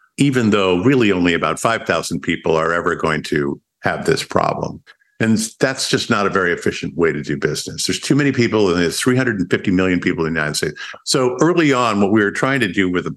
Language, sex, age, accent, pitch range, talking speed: English, male, 50-69, American, 90-125 Hz, 225 wpm